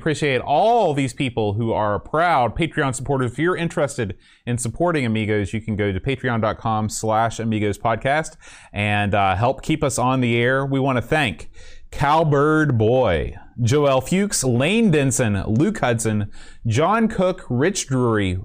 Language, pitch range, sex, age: English, 110-165 Hz, male, 30-49